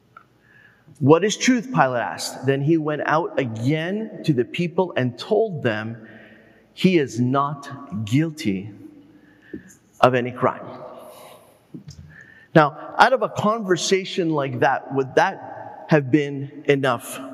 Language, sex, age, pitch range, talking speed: English, male, 30-49, 130-190 Hz, 120 wpm